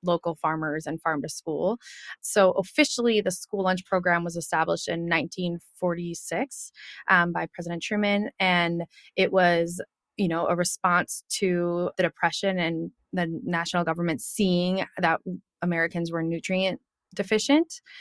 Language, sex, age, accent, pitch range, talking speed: English, female, 20-39, American, 165-190 Hz, 135 wpm